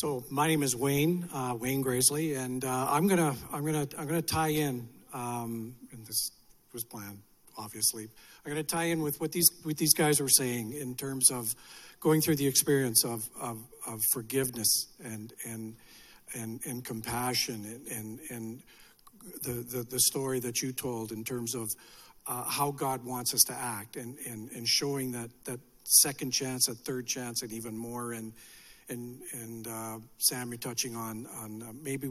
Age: 50-69